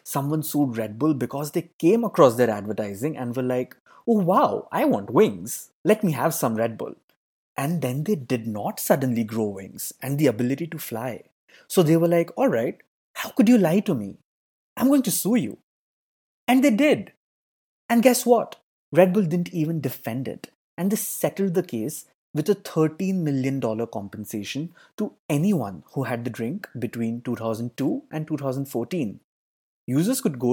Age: 20-39